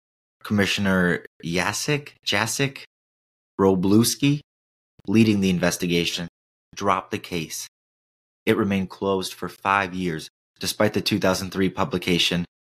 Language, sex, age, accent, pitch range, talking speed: English, male, 20-39, American, 80-95 Hz, 95 wpm